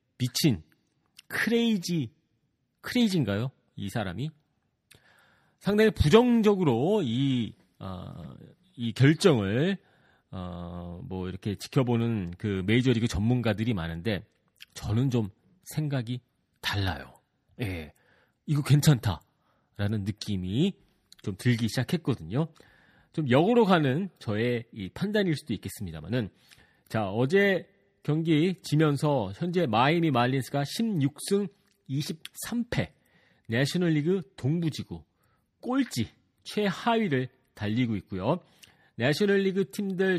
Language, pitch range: Korean, 110-170 Hz